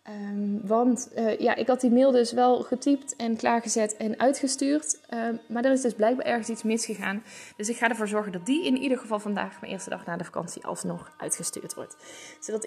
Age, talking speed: 10-29, 215 wpm